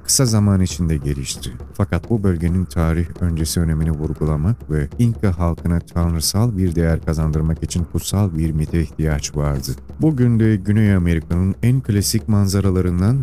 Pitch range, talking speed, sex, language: 80-105 Hz, 140 wpm, male, Turkish